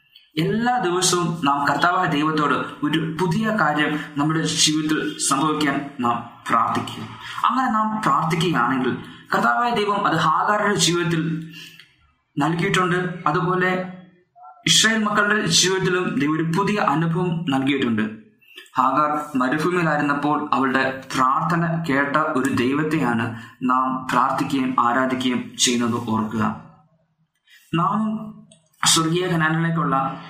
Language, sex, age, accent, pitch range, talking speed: Malayalam, male, 20-39, native, 140-180 Hz, 90 wpm